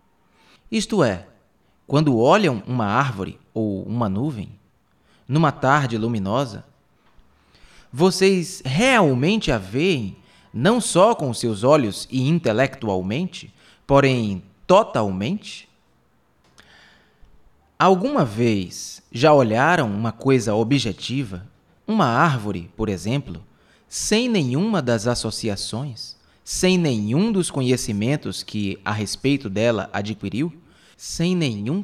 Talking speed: 95 wpm